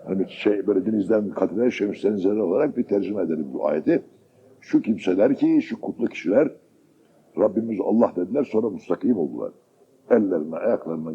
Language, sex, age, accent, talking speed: Turkish, male, 60-79, native, 145 wpm